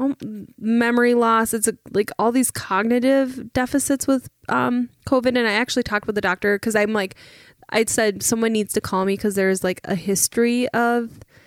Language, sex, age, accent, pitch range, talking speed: English, female, 10-29, American, 185-225 Hz, 180 wpm